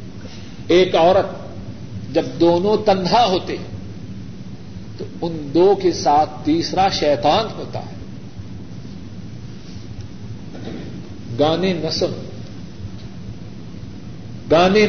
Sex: male